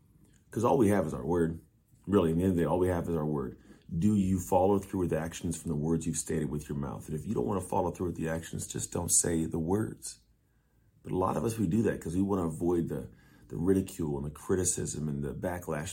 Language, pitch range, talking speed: English, 80-105 Hz, 275 wpm